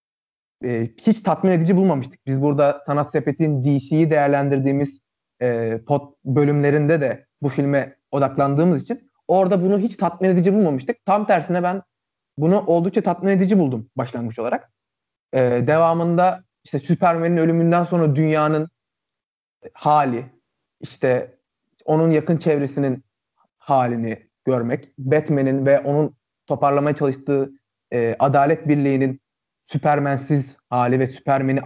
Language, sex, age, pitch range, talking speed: Turkish, male, 30-49, 130-175 Hz, 115 wpm